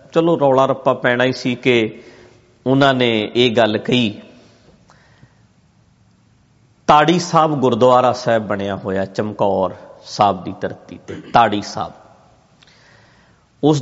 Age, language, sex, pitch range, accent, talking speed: 50-69, English, male, 110-145 Hz, Indian, 95 wpm